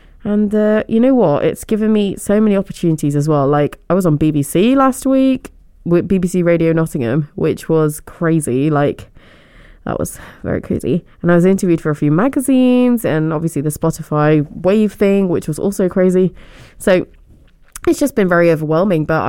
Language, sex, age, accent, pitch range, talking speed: English, female, 20-39, British, 155-210 Hz, 175 wpm